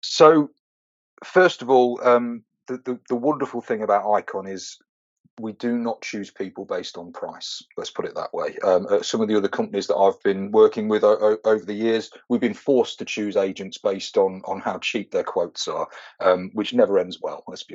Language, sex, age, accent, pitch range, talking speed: English, male, 30-49, British, 105-145 Hz, 220 wpm